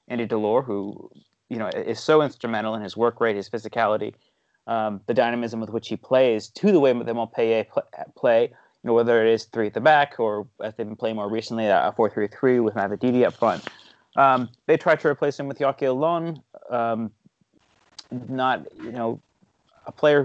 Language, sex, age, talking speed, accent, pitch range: English, male, 30-49, 195 wpm, American, 110-130 Hz